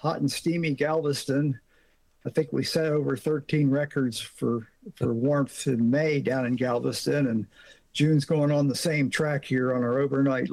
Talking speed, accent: 170 wpm, American